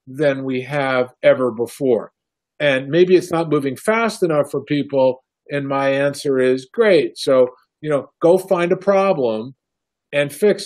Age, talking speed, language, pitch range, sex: 50-69, 160 wpm, English, 135-175 Hz, male